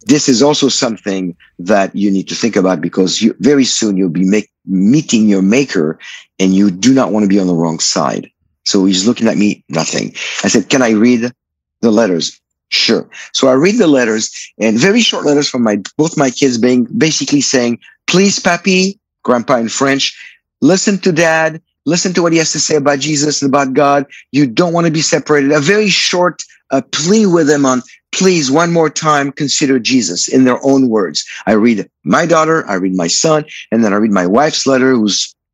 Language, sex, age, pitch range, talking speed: English, male, 50-69, 105-150 Hz, 205 wpm